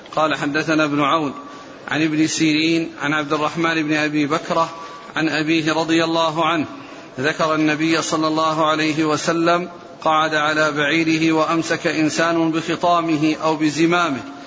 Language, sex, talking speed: Arabic, male, 135 wpm